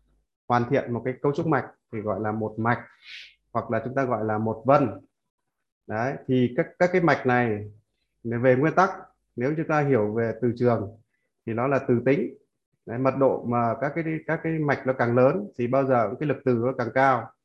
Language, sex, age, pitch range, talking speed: Vietnamese, male, 20-39, 115-140 Hz, 215 wpm